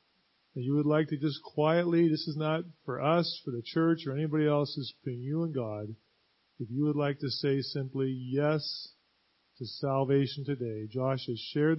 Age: 40-59